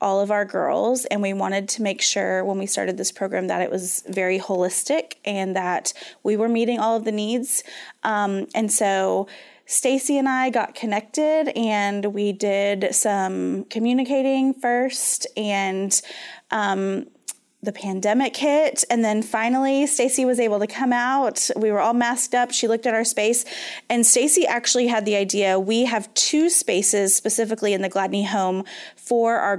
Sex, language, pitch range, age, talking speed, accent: female, English, 195-235 Hz, 20-39, 170 wpm, American